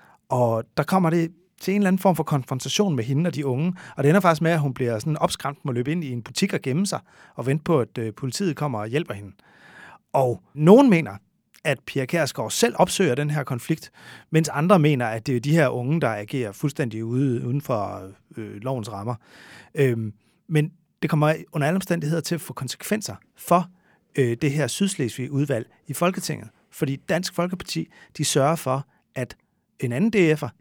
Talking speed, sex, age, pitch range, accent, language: 195 wpm, male, 30-49, 130-170 Hz, native, Danish